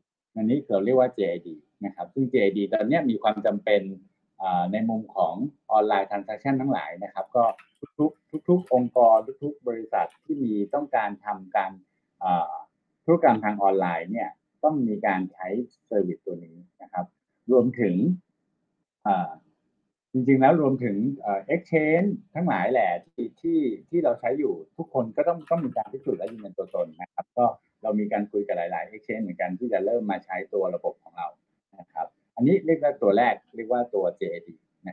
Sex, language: male, Thai